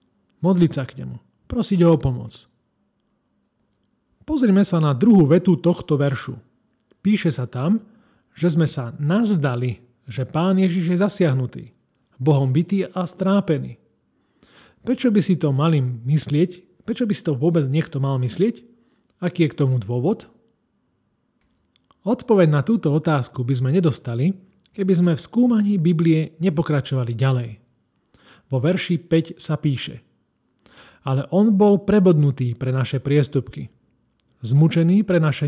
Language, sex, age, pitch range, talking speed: Slovak, male, 40-59, 135-185 Hz, 130 wpm